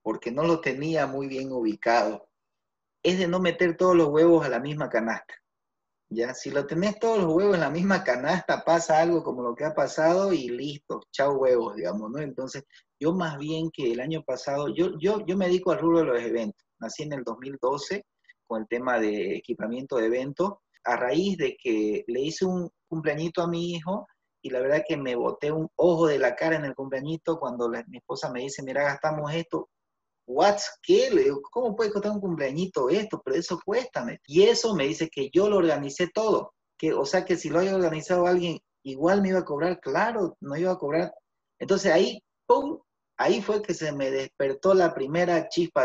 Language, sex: Spanish, male